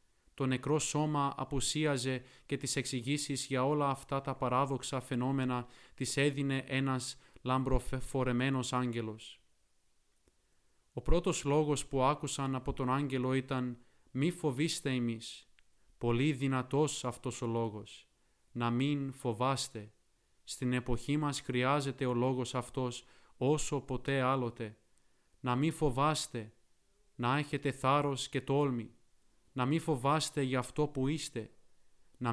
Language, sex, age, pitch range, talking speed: Greek, male, 20-39, 125-140 Hz, 120 wpm